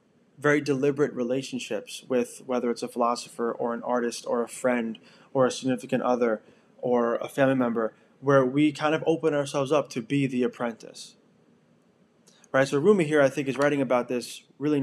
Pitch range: 125-150 Hz